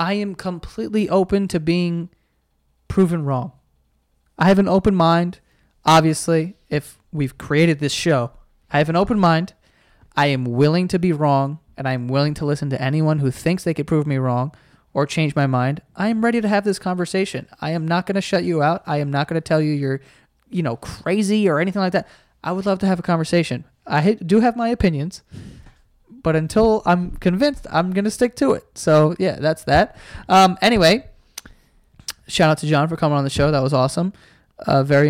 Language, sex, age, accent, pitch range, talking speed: English, male, 20-39, American, 145-180 Hz, 205 wpm